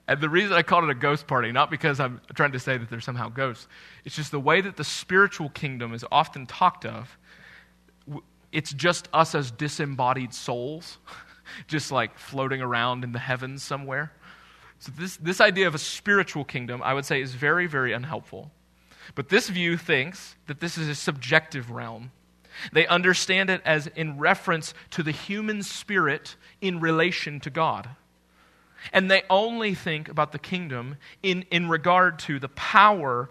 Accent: American